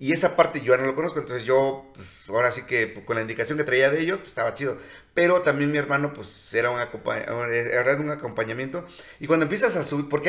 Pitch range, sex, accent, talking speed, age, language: 125-170 Hz, male, Mexican, 240 wpm, 40-59, Spanish